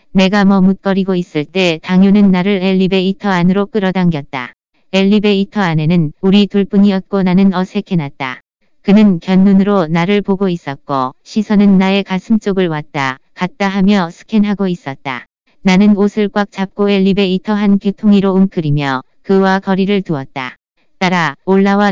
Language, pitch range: Korean, 175-200 Hz